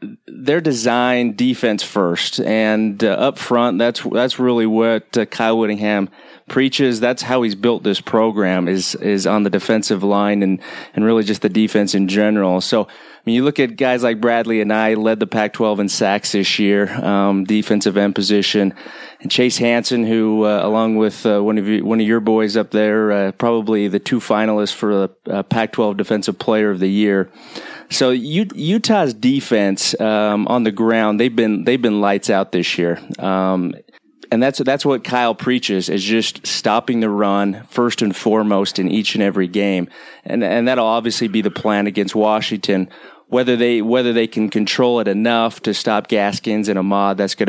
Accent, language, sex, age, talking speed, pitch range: American, English, male, 30-49, 190 wpm, 100-120 Hz